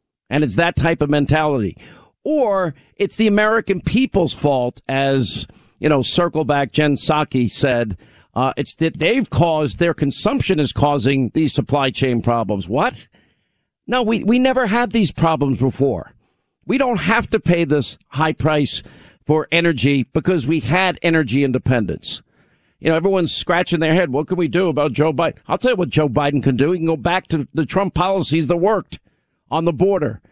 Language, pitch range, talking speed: English, 135-170 Hz, 180 wpm